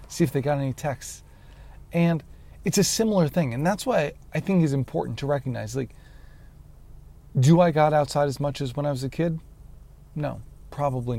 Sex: male